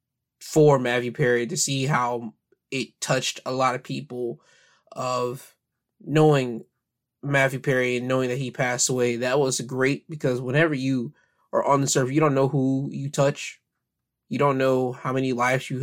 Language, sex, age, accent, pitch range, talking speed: English, male, 20-39, American, 120-140 Hz, 170 wpm